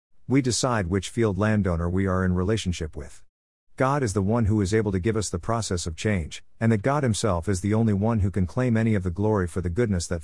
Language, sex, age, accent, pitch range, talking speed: English, male, 50-69, American, 90-115 Hz, 250 wpm